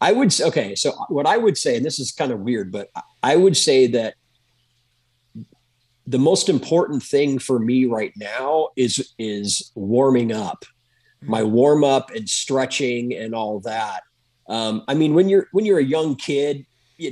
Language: English